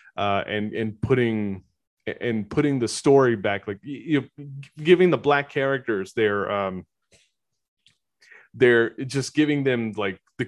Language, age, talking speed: English, 20-39, 135 wpm